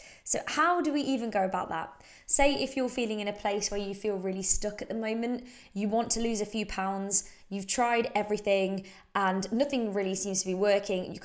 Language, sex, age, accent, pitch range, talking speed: English, female, 20-39, British, 190-245 Hz, 220 wpm